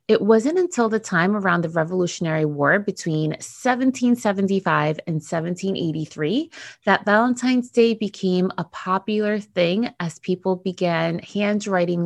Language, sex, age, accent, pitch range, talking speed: English, female, 20-39, American, 165-220 Hz, 120 wpm